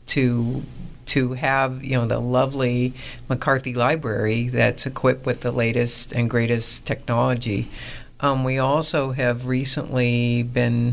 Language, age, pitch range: English, 50-69, 120-130 Hz